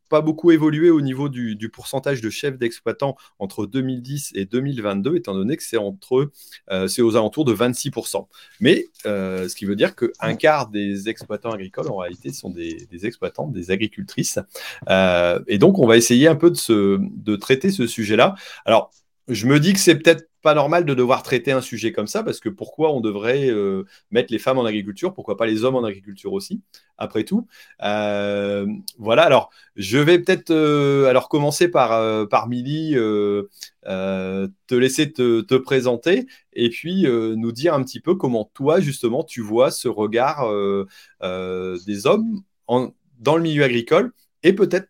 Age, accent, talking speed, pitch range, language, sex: 30-49, French, 190 wpm, 105-150 Hz, French, male